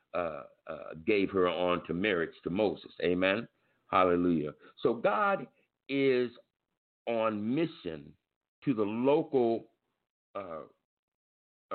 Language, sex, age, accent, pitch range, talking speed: English, male, 60-79, American, 110-160 Hz, 100 wpm